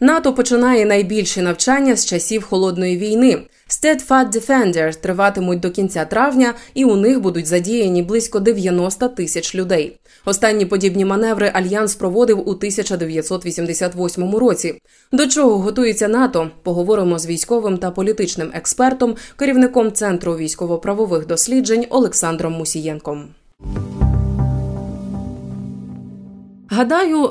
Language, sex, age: Ukrainian, female, 20-39